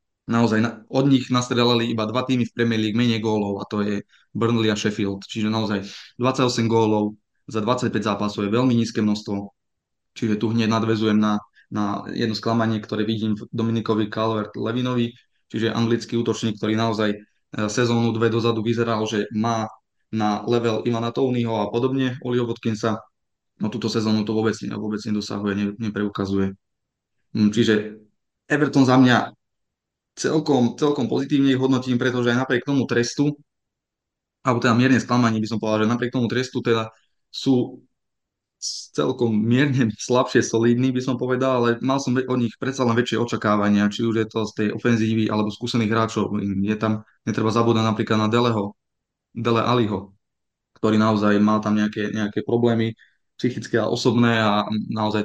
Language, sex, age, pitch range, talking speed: Czech, male, 20-39, 105-120 Hz, 160 wpm